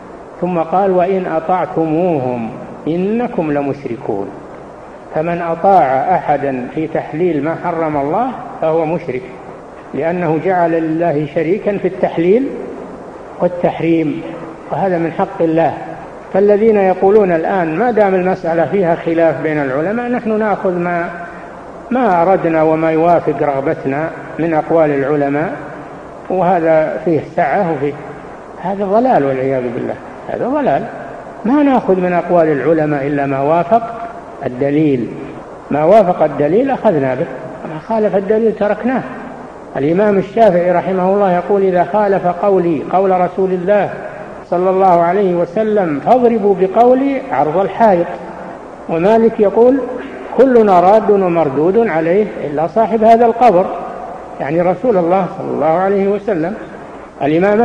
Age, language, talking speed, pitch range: 60-79, Arabic, 120 wpm, 160-205 Hz